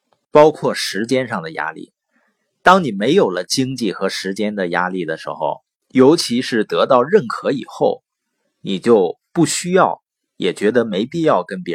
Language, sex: Chinese, male